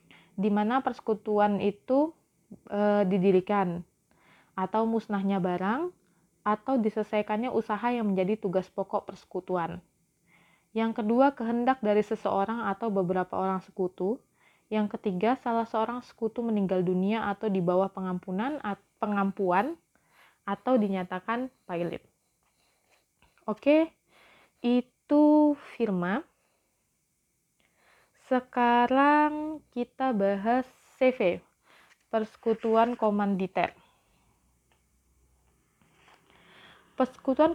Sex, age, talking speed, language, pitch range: female, 20-39, 85 wpm, Indonesian, 195-240 Hz